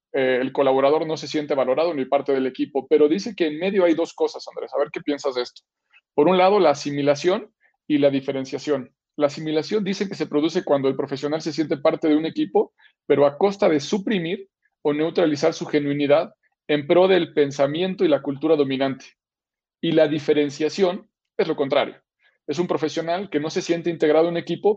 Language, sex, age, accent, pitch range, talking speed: Spanish, male, 40-59, Mexican, 145-170 Hz, 200 wpm